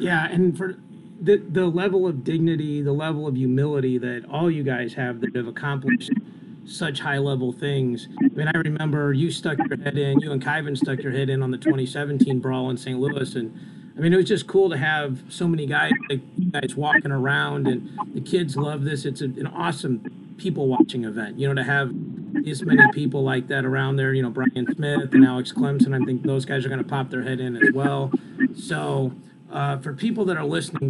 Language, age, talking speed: English, 40-59, 220 wpm